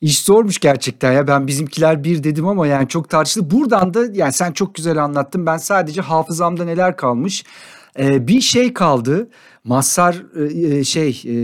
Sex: male